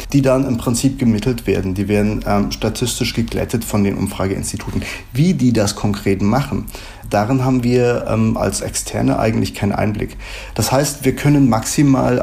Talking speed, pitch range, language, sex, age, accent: 160 wpm, 105-130 Hz, German, male, 30-49, German